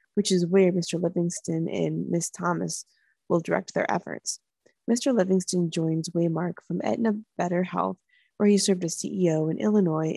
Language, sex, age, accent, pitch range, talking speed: English, female, 20-39, American, 170-210 Hz, 160 wpm